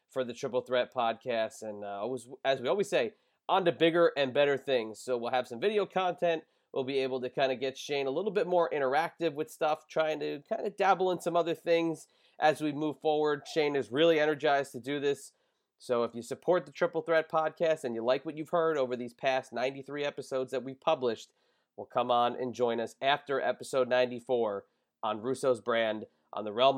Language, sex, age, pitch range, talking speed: English, male, 30-49, 125-165 Hz, 215 wpm